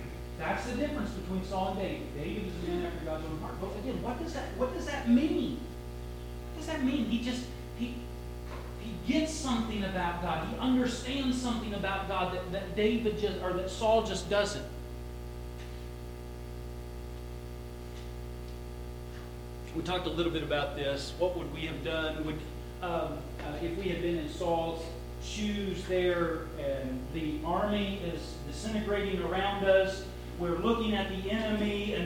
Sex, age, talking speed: male, 40-59, 160 wpm